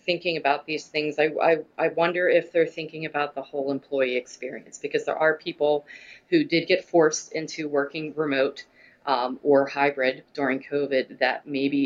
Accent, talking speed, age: American, 165 wpm, 30-49